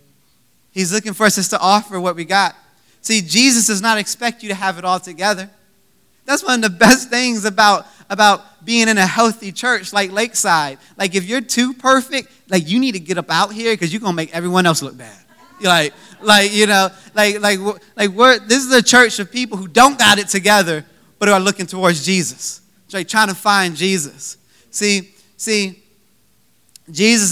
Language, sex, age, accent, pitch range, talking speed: English, male, 20-39, American, 195-235 Hz, 200 wpm